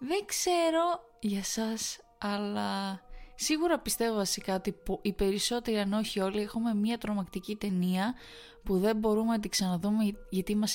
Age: 20-39